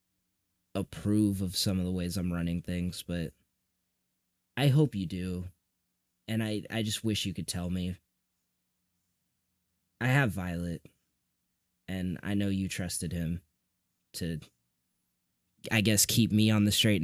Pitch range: 90-105 Hz